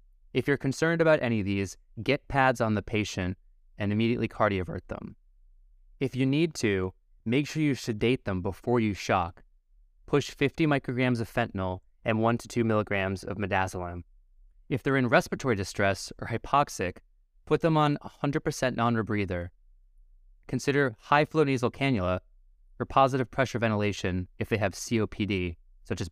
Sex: male